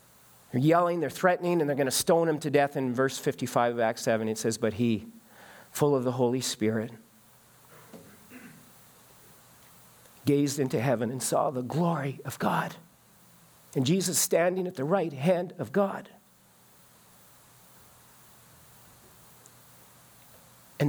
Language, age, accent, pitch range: English, 40-59, American, 135-220 Hz